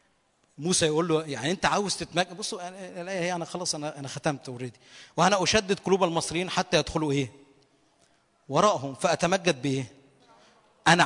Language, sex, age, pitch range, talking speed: Arabic, male, 40-59, 150-220 Hz, 145 wpm